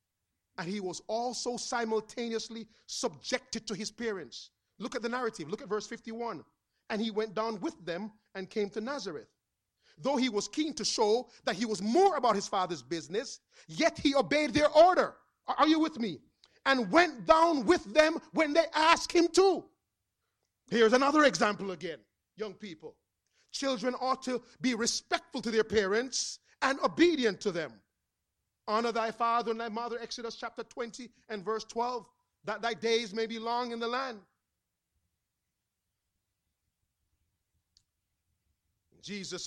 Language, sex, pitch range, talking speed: English, male, 165-250 Hz, 150 wpm